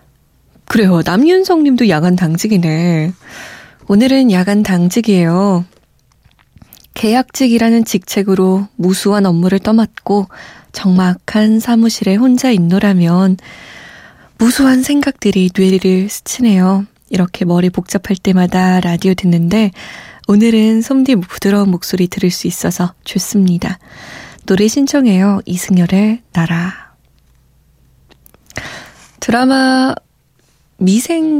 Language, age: Korean, 20-39